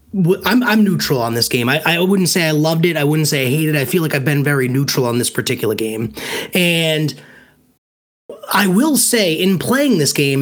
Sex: male